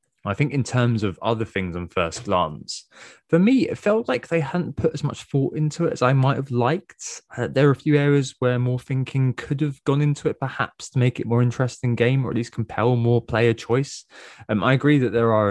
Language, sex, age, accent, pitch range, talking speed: English, male, 20-39, British, 95-130 Hz, 240 wpm